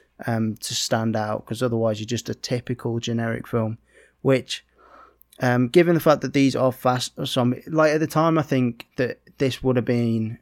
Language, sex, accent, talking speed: English, male, British, 190 wpm